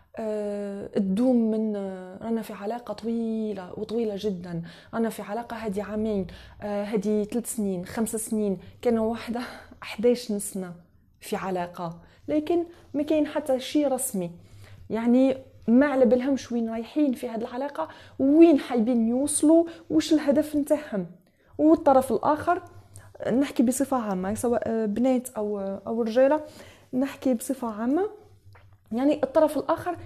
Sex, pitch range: female, 210-270 Hz